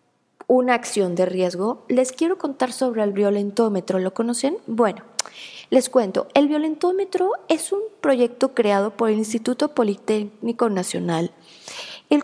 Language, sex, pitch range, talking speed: Spanish, female, 215-270 Hz, 130 wpm